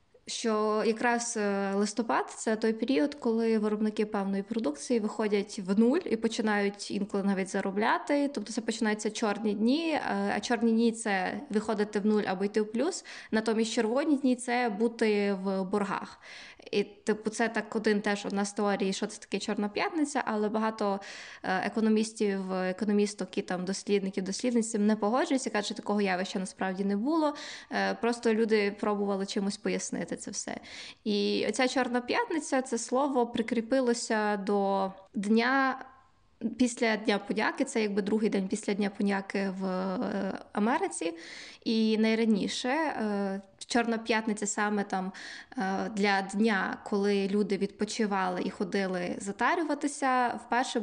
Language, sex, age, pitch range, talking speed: Ukrainian, female, 20-39, 205-240 Hz, 135 wpm